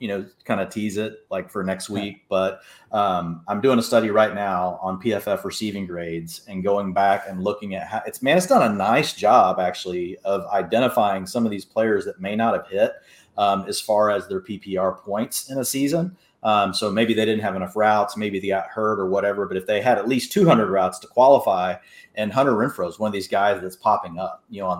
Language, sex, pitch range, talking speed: English, male, 95-115 Hz, 230 wpm